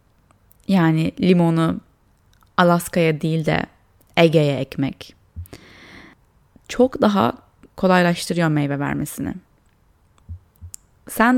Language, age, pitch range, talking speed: Turkish, 20-39, 110-185 Hz, 70 wpm